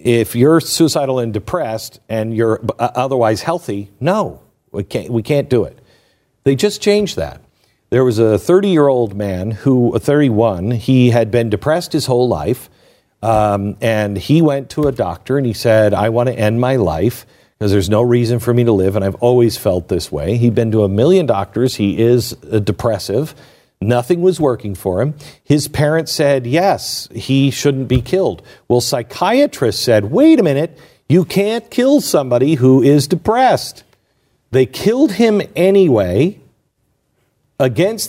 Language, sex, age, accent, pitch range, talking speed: English, male, 50-69, American, 115-155 Hz, 165 wpm